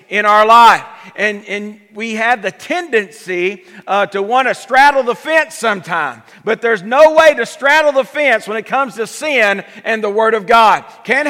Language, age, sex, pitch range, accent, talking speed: English, 50-69, male, 195-265 Hz, American, 190 wpm